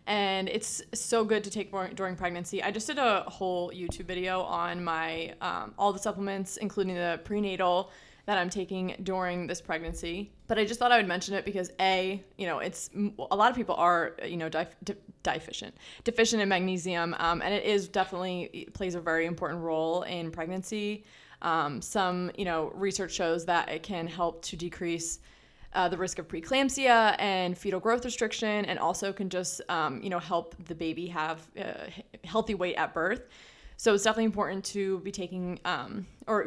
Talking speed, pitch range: 190 wpm, 175-210 Hz